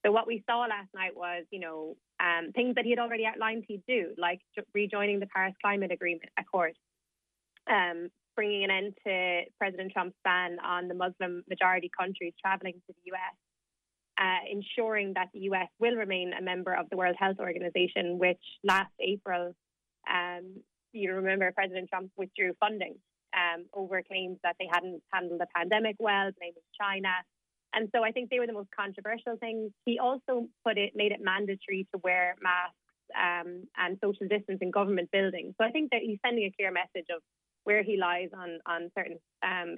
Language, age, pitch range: English, 20-39, 180-210 Hz